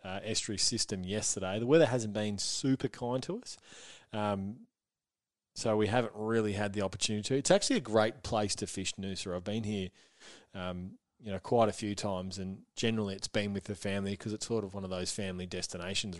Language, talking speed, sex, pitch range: English, 200 wpm, male, 90-110 Hz